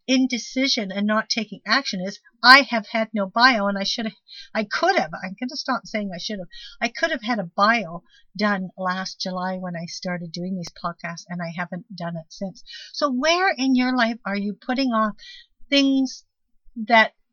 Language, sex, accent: English, female, American